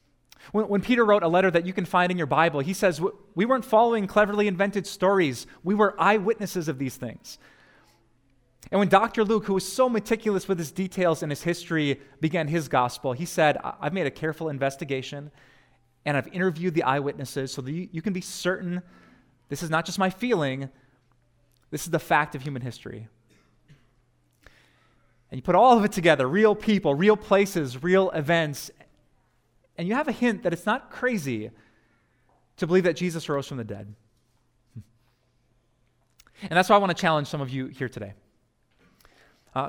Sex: male